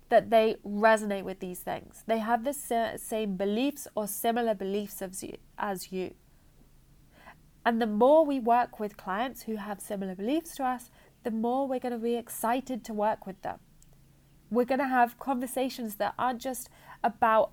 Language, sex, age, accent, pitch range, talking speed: English, female, 30-49, British, 200-255 Hz, 160 wpm